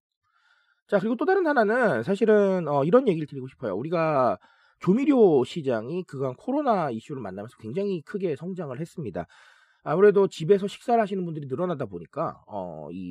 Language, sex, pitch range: Korean, male, 155-240 Hz